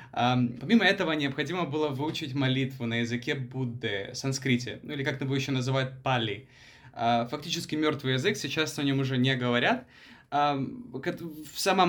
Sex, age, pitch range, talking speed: male, 20-39, 130-155 Hz, 135 wpm